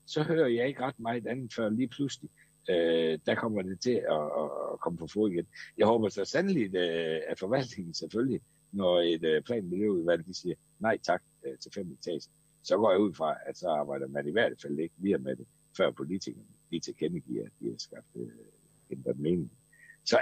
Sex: male